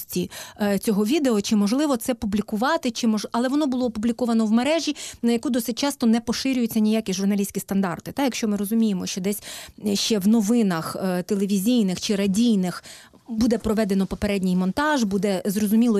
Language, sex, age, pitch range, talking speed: Ukrainian, female, 30-49, 195-240 Hz, 155 wpm